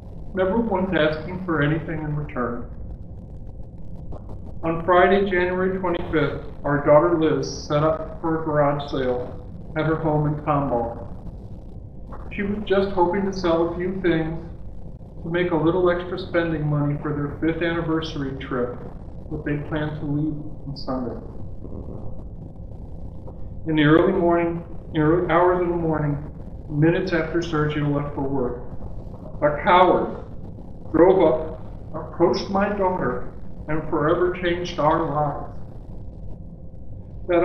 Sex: male